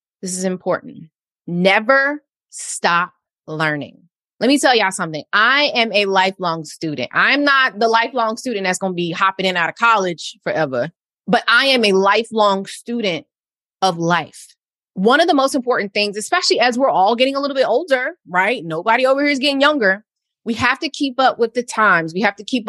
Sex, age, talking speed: female, 20-39, 195 wpm